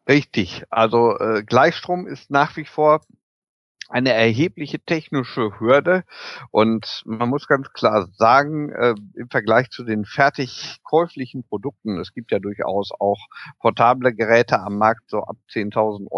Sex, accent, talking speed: male, German, 140 wpm